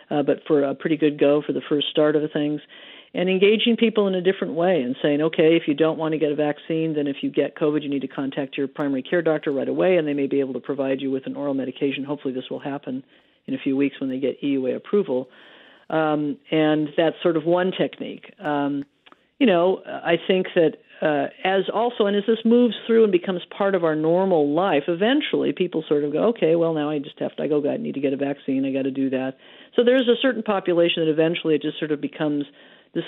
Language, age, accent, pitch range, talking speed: English, 50-69, American, 140-185 Hz, 250 wpm